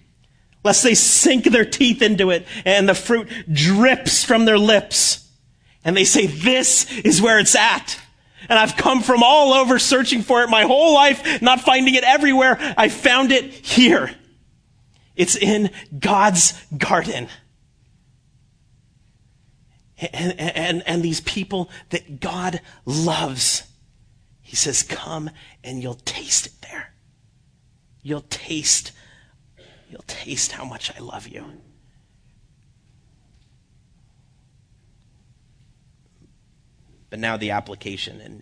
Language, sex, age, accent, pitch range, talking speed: English, male, 30-49, American, 115-180 Hz, 120 wpm